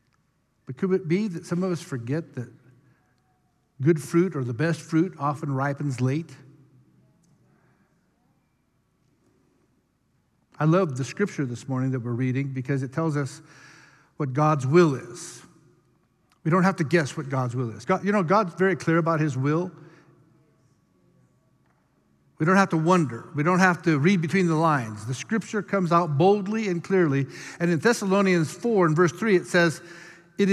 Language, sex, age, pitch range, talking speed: English, male, 50-69, 150-220 Hz, 160 wpm